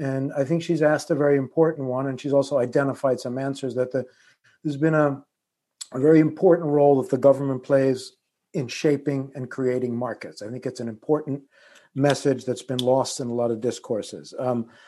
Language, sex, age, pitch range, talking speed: English, male, 50-69, 130-150 Hz, 195 wpm